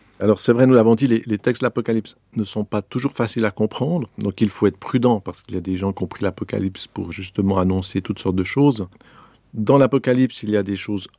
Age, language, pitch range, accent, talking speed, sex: 50-69, French, 100-120 Hz, French, 250 wpm, male